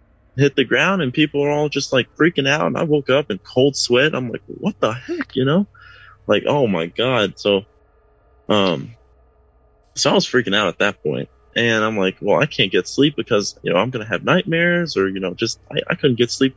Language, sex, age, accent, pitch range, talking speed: English, male, 20-39, American, 100-120 Hz, 230 wpm